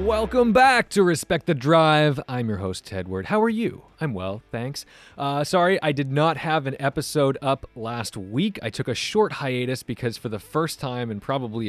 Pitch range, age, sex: 105-140 Hz, 30-49, male